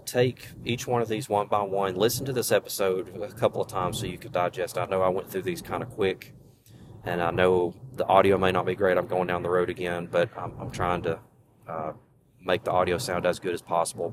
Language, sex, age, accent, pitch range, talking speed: English, male, 30-49, American, 95-115 Hz, 245 wpm